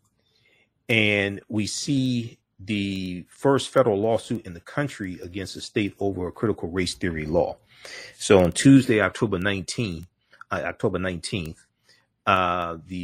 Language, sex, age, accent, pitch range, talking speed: English, male, 40-59, American, 95-120 Hz, 130 wpm